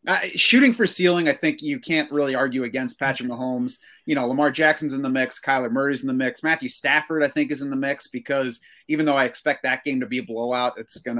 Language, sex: English, male